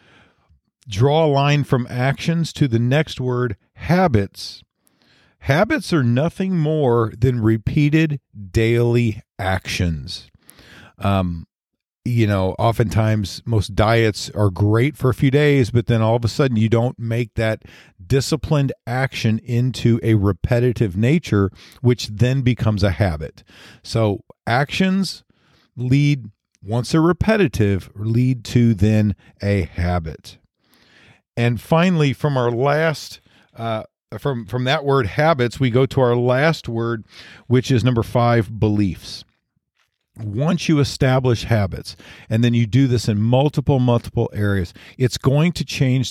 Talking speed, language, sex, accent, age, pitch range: 130 wpm, English, male, American, 40-59, 105-135 Hz